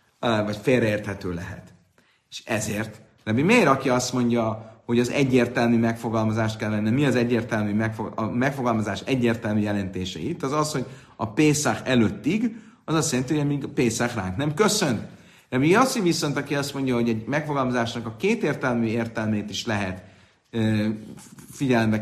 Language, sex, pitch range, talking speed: Hungarian, male, 110-145 Hz, 155 wpm